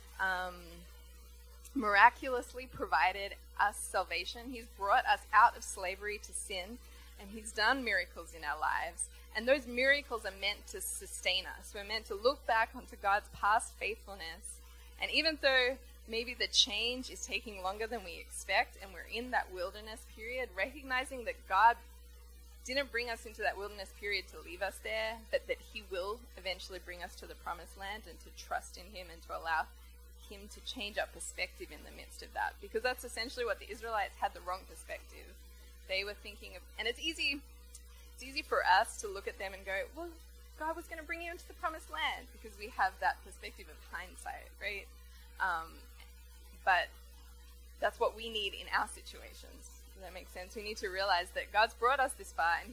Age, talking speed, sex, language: 20-39, 190 wpm, female, English